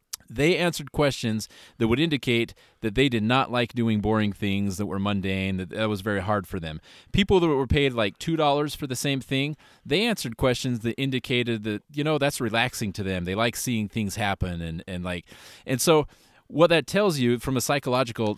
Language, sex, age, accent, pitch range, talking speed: English, male, 30-49, American, 115-160 Hz, 210 wpm